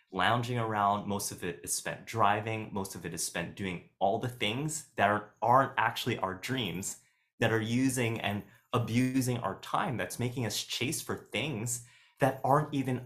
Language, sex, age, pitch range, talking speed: English, male, 20-39, 95-120 Hz, 175 wpm